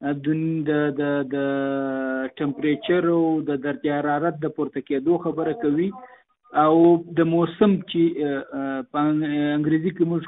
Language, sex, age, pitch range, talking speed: Urdu, male, 50-69, 160-205 Hz, 115 wpm